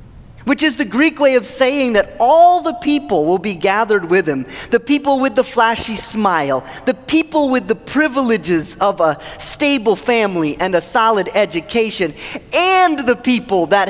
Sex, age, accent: male, 30-49, American